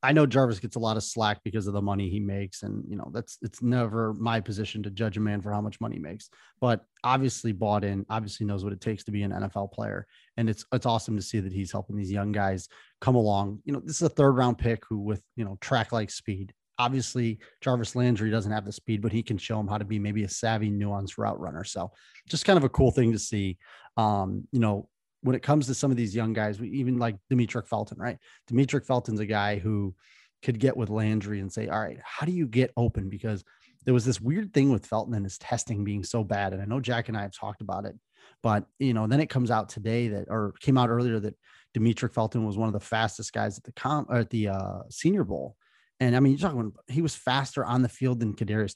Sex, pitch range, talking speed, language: male, 105-125 Hz, 255 wpm, English